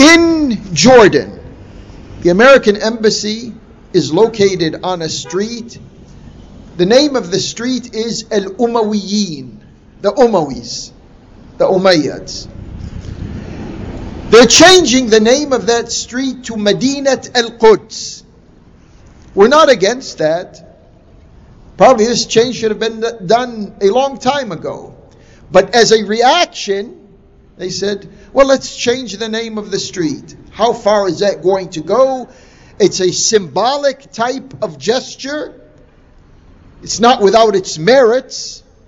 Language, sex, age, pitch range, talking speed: English, male, 50-69, 180-245 Hz, 120 wpm